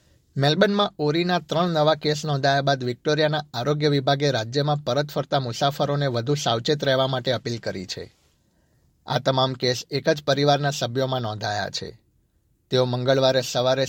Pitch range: 130-150 Hz